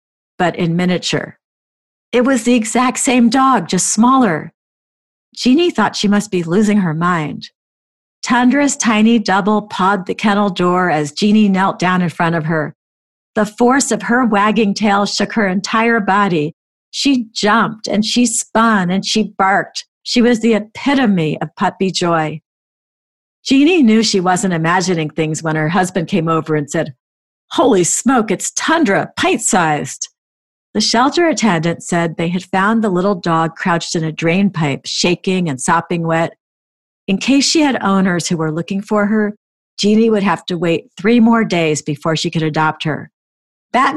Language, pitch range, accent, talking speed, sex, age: English, 165-220 Hz, American, 165 wpm, female, 50-69